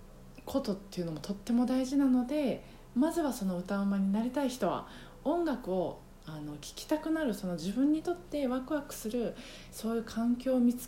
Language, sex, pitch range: Japanese, female, 170-255 Hz